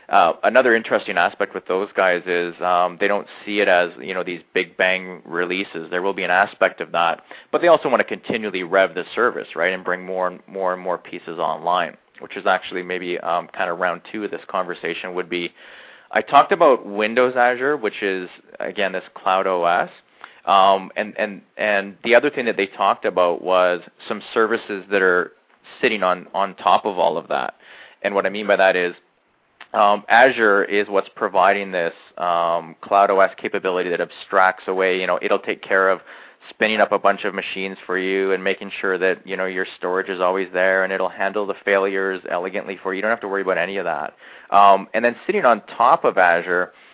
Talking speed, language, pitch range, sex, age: 210 wpm, English, 90-100 Hz, male, 20-39